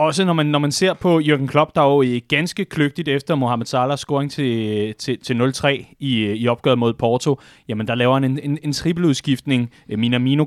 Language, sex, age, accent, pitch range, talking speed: Danish, male, 30-49, native, 120-155 Hz, 210 wpm